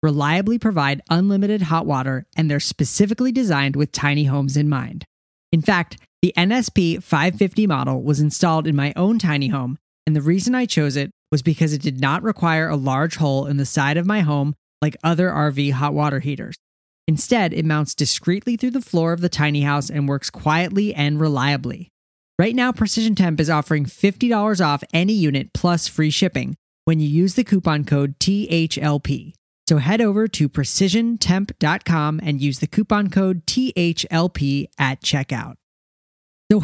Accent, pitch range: American, 145-185 Hz